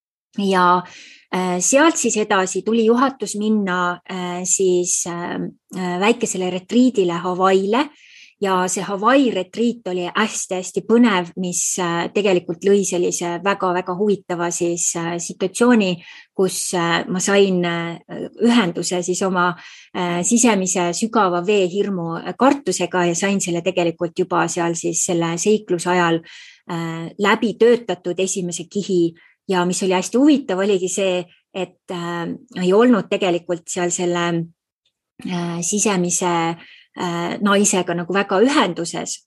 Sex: female